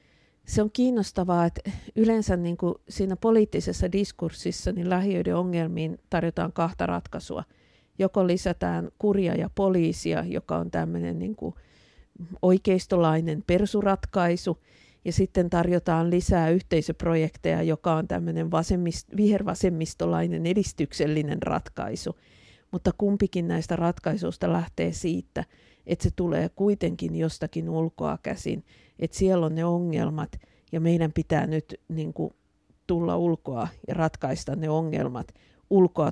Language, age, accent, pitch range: Finnish, 50-69, native, 160-185 Hz